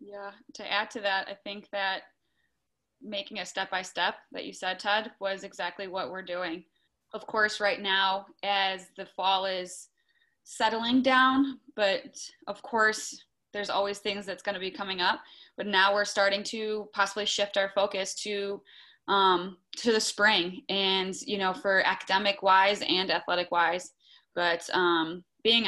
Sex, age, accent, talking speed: female, 20-39, American, 155 wpm